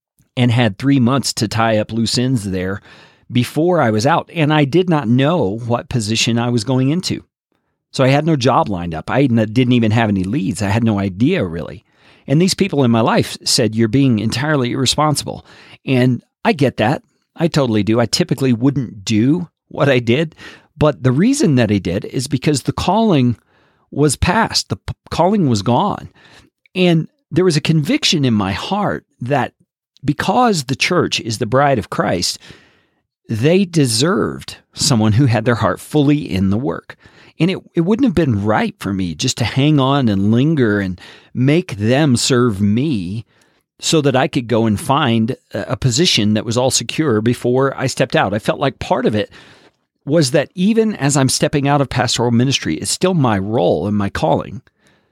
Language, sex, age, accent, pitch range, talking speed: English, male, 40-59, American, 115-155 Hz, 185 wpm